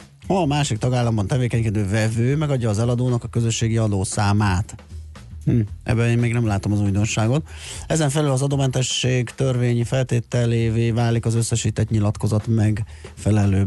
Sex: male